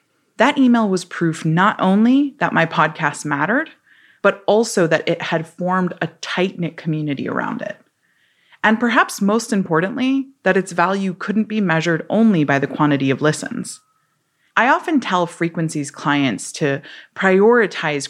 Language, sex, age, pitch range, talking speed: English, female, 20-39, 165-235 Hz, 145 wpm